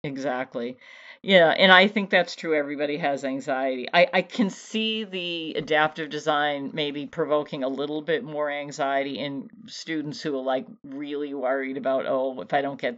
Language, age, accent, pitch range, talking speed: English, 50-69, American, 140-185 Hz, 170 wpm